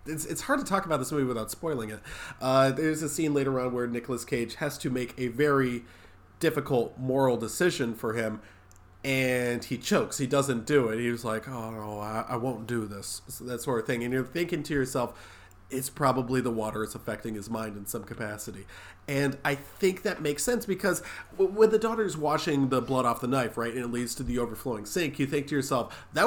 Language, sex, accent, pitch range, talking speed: English, male, American, 115-145 Hz, 220 wpm